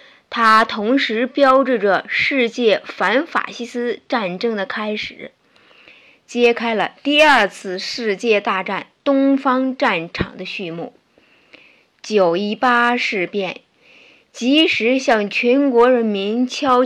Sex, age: female, 20-39